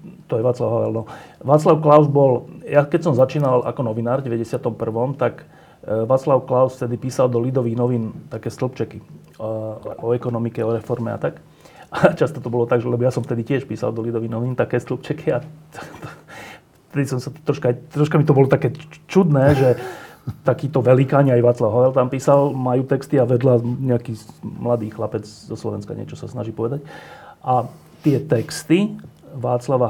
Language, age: Slovak, 30-49